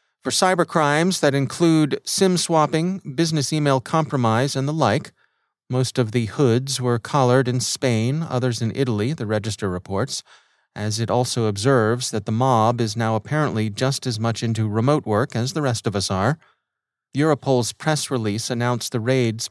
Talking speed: 165 wpm